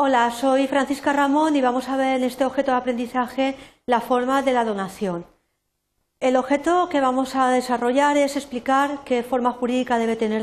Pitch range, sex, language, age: 235-280 Hz, female, Spanish, 50-69